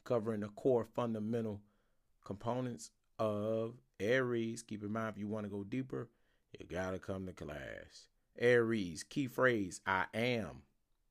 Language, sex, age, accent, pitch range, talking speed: English, male, 30-49, American, 95-120 Hz, 145 wpm